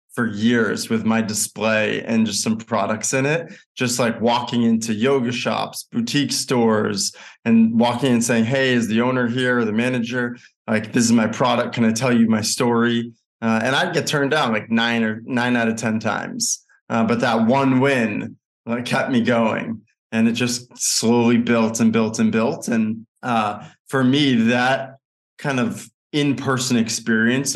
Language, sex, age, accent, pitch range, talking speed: English, male, 20-39, American, 115-130 Hz, 180 wpm